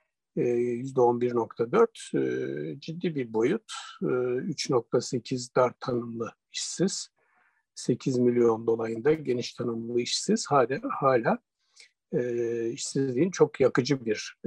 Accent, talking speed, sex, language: native, 80 wpm, male, Turkish